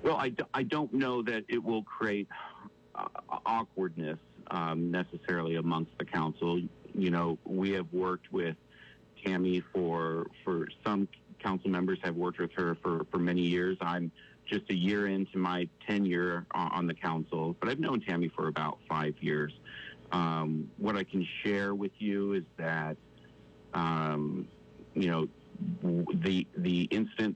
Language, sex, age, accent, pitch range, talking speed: English, male, 50-69, American, 80-95 Hz, 150 wpm